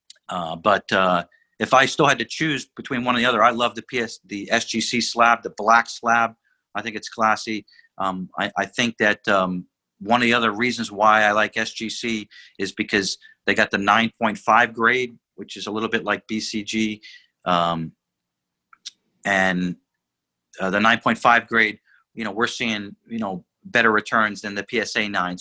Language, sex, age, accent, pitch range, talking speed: English, male, 40-59, American, 100-120 Hz, 175 wpm